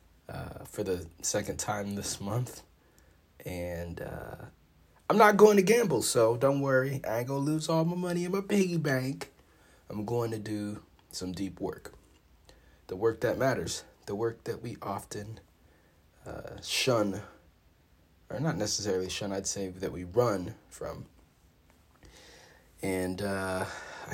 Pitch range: 85-120 Hz